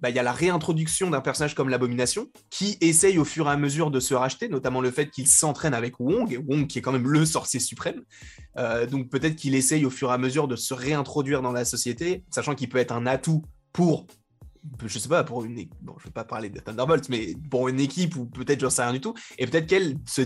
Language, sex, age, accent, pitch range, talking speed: French, male, 20-39, French, 125-155 Hz, 265 wpm